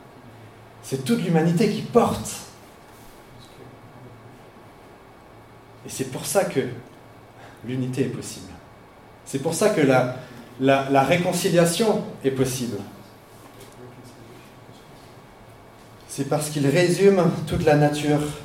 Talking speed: 95 wpm